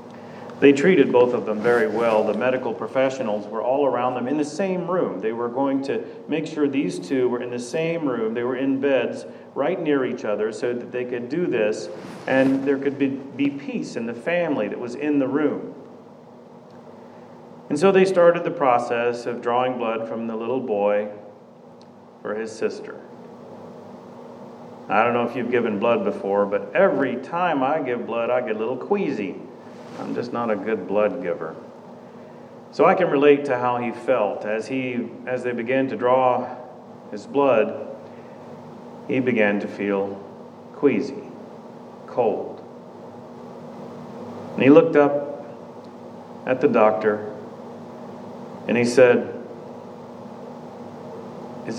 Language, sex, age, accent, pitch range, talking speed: English, male, 40-59, American, 110-140 Hz, 155 wpm